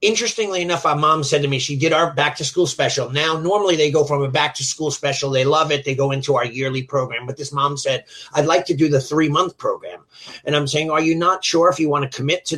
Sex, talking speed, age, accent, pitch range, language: male, 275 wpm, 30-49, American, 140-170 Hz, English